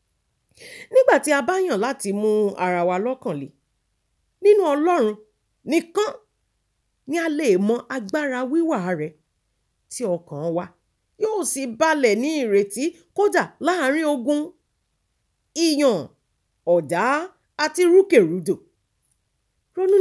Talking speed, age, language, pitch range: 100 wpm, 40-59, English, 180-300 Hz